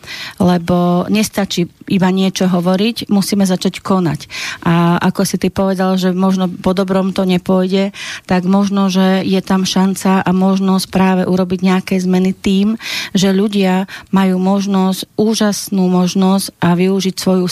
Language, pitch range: Slovak, 185-200 Hz